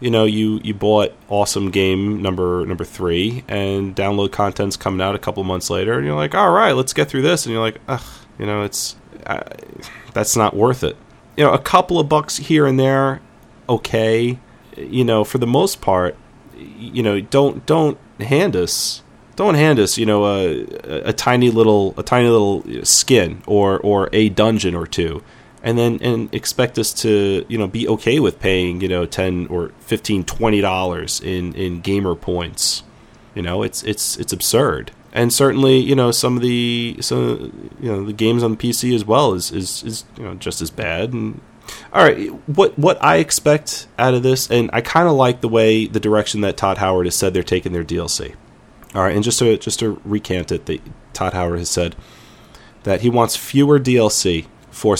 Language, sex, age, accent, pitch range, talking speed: English, male, 30-49, American, 95-120 Hz, 200 wpm